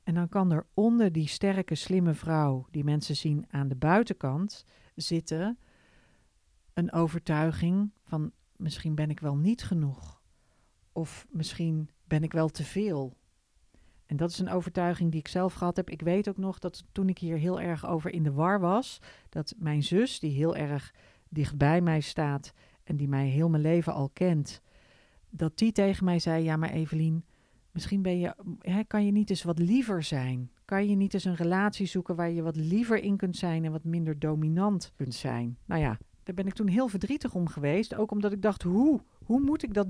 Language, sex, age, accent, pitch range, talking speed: Dutch, female, 40-59, Dutch, 155-195 Hz, 200 wpm